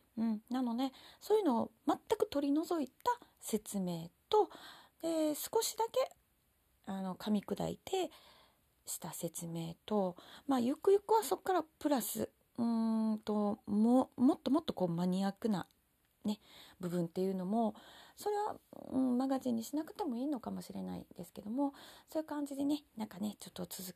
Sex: female